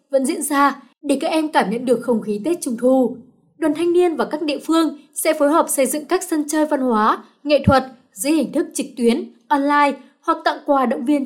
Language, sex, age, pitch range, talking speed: Vietnamese, female, 20-39, 235-310 Hz, 235 wpm